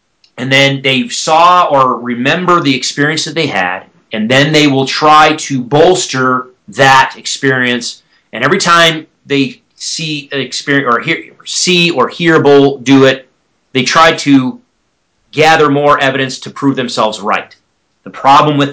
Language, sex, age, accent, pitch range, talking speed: English, male, 30-49, American, 130-165 Hz, 145 wpm